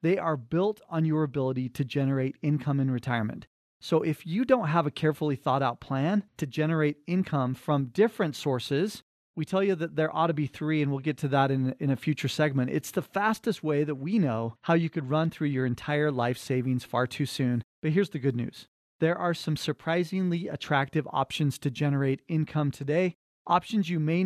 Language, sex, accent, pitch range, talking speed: English, male, American, 140-170 Hz, 205 wpm